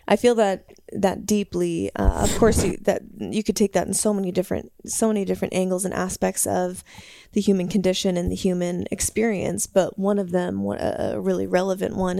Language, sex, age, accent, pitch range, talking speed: English, female, 20-39, American, 180-205 Hz, 190 wpm